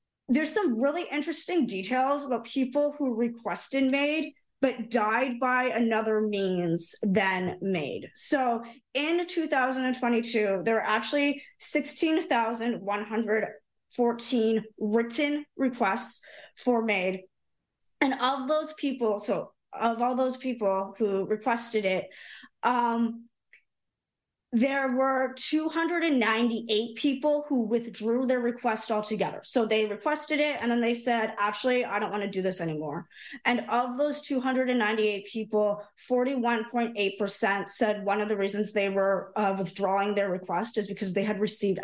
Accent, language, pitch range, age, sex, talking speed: American, English, 205-260 Hz, 20-39, female, 125 wpm